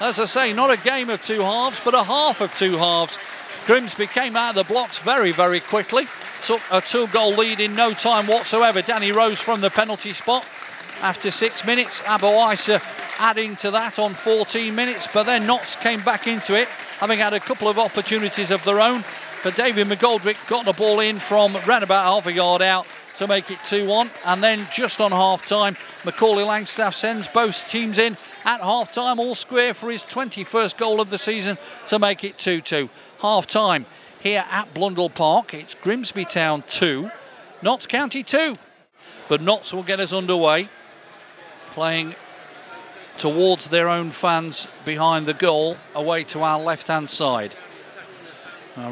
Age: 40-59